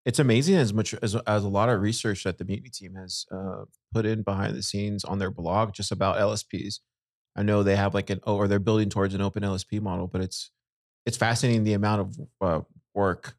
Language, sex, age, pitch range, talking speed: English, male, 30-49, 95-115 Hz, 225 wpm